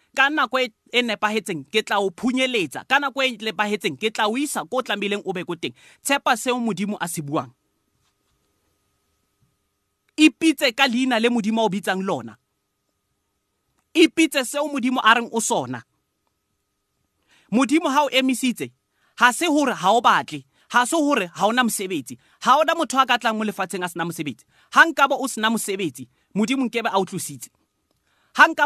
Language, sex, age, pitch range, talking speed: English, male, 30-49, 185-260 Hz, 120 wpm